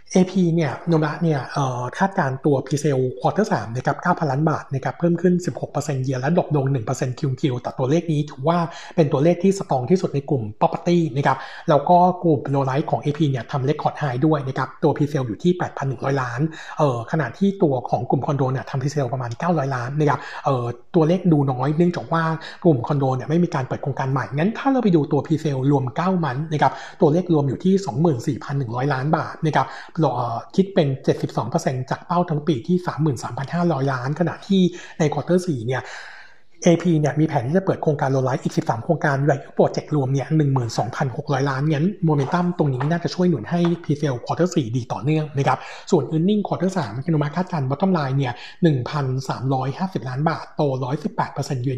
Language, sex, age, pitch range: Thai, male, 60-79, 135-170 Hz